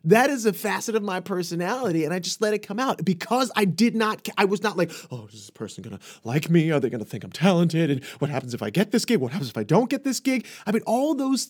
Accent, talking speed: American, 285 wpm